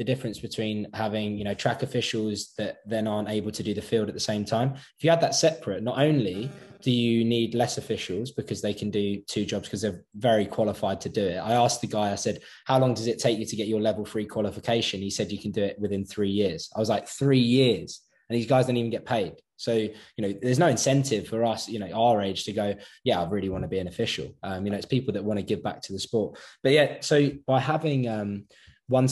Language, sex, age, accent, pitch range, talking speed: English, male, 20-39, British, 105-120 Hz, 260 wpm